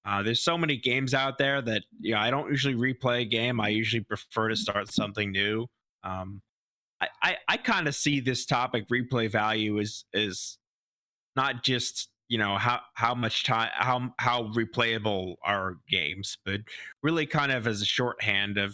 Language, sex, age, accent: English, male, 20-39, American